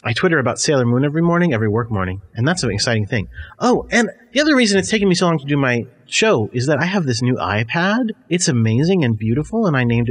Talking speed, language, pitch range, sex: 255 wpm, English, 120-190 Hz, male